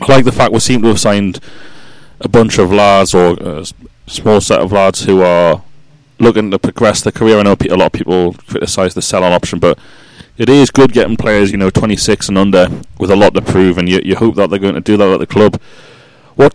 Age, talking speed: 30-49, 235 wpm